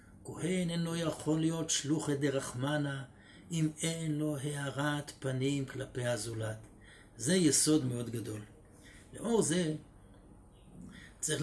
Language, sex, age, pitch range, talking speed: Hebrew, male, 60-79, 120-155 Hz, 105 wpm